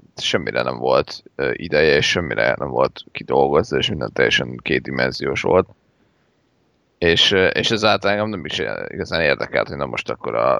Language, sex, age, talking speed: Hungarian, male, 30-49, 155 wpm